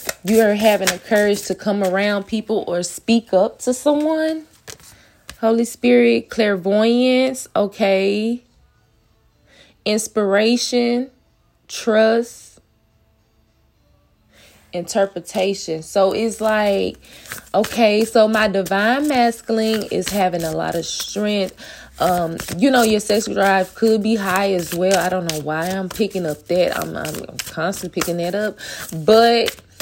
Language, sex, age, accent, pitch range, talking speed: English, female, 20-39, American, 175-220 Hz, 120 wpm